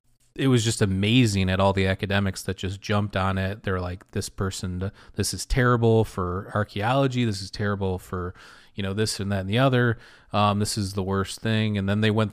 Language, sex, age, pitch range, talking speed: English, male, 30-49, 95-115 Hz, 215 wpm